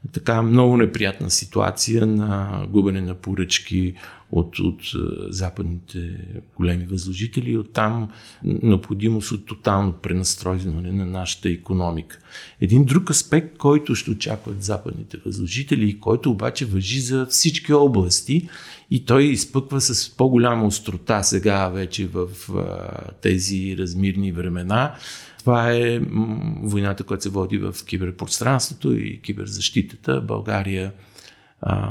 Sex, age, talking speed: male, 50-69, 115 wpm